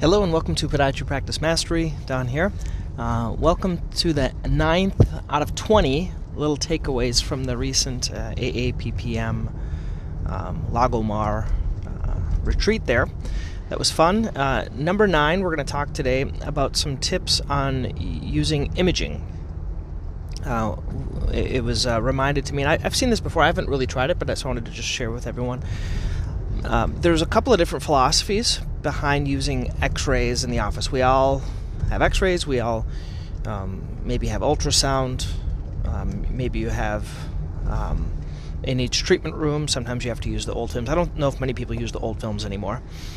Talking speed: 175 wpm